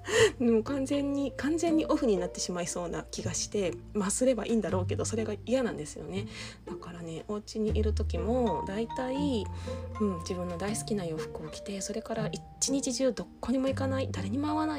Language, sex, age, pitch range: Japanese, female, 20-39, 175-235 Hz